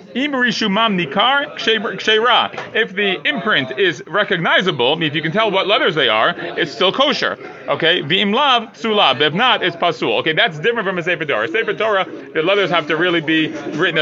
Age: 30-49